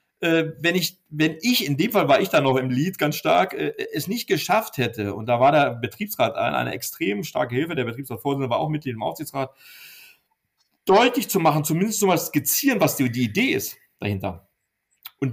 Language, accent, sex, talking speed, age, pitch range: German, German, male, 200 wpm, 40-59, 130-165 Hz